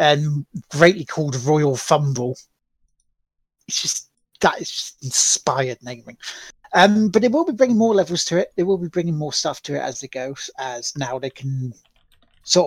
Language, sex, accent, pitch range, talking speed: English, male, British, 135-175 Hz, 180 wpm